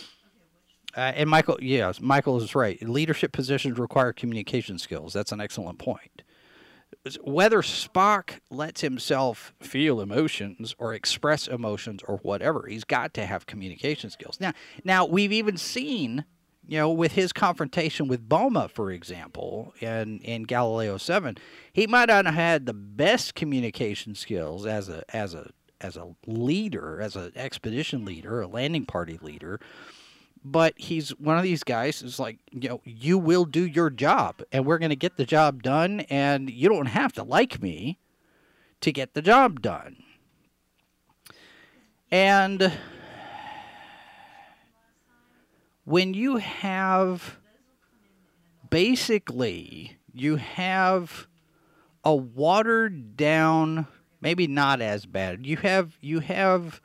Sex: male